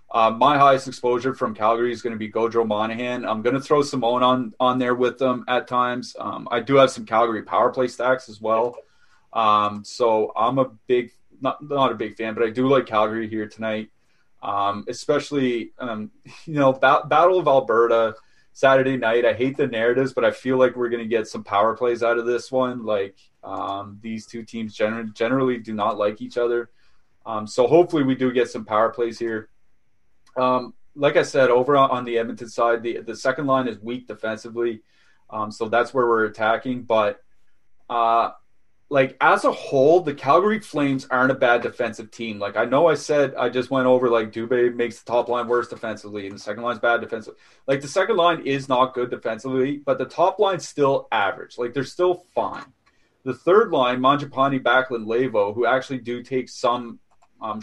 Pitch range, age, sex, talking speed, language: 115-130 Hz, 20-39, male, 200 wpm, English